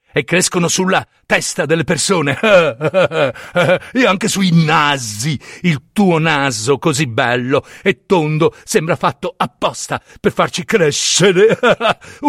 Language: Italian